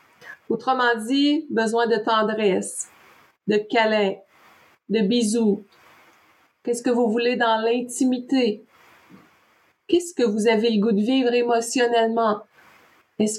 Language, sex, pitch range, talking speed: French, female, 205-250 Hz, 110 wpm